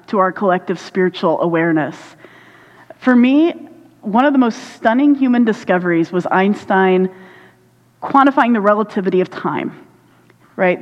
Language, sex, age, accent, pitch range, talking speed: English, female, 30-49, American, 180-235 Hz, 120 wpm